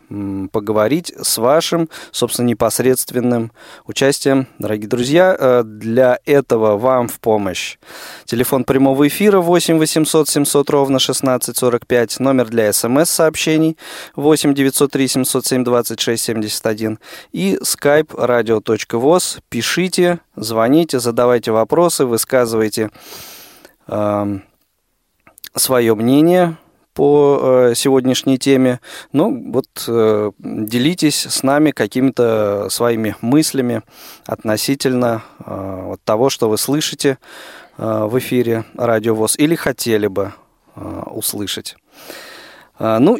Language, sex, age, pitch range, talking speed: Russian, male, 20-39, 115-145 Hz, 95 wpm